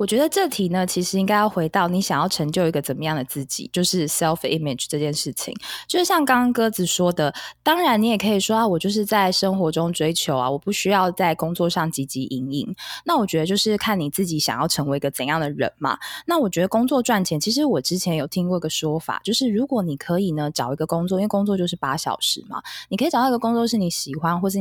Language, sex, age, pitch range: Chinese, female, 20-39, 155-215 Hz